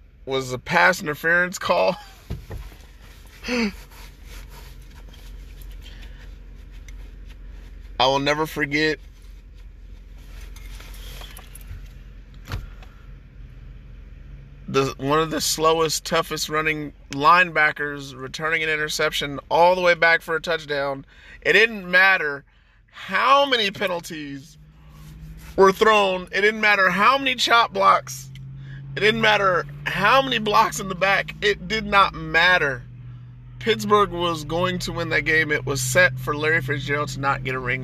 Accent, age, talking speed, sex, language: American, 30-49, 115 wpm, male, English